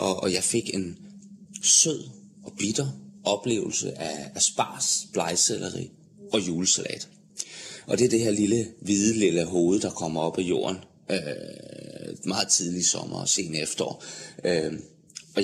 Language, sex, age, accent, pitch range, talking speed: Danish, male, 30-49, native, 85-115 Hz, 145 wpm